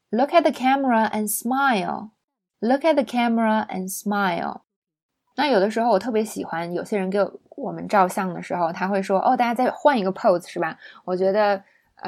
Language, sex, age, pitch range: Chinese, female, 20-39, 190-240 Hz